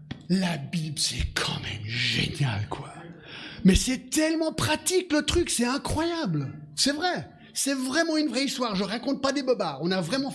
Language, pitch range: French, 180-250 Hz